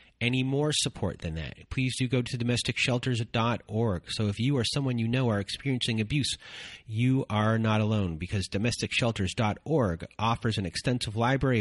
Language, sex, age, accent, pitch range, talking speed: English, male, 30-49, American, 100-130 Hz, 155 wpm